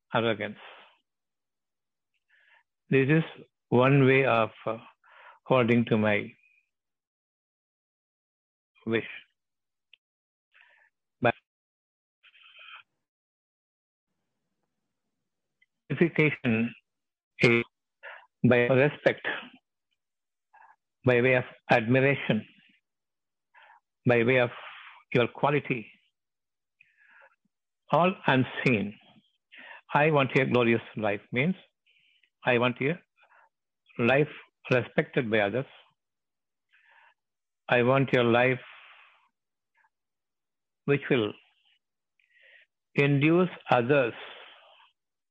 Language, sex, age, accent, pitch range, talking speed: Tamil, male, 60-79, native, 120-145 Hz, 65 wpm